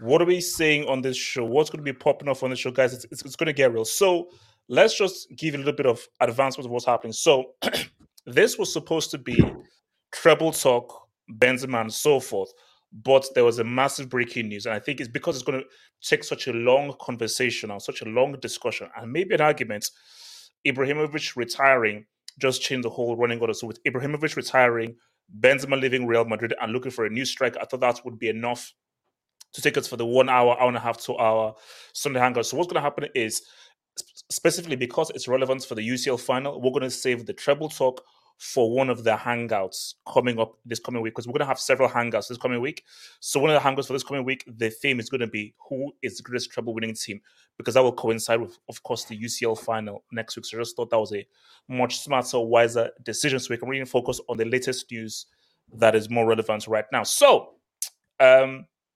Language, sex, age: English, male, 20-39